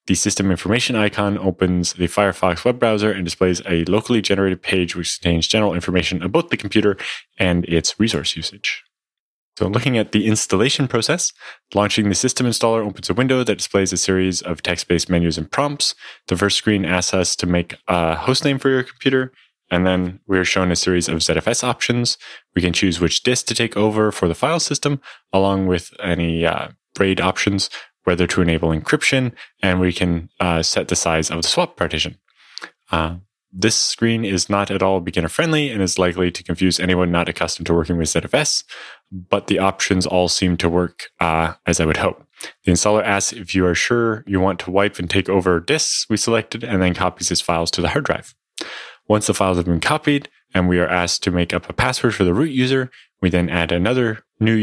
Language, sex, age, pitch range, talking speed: English, male, 20-39, 90-110 Hz, 205 wpm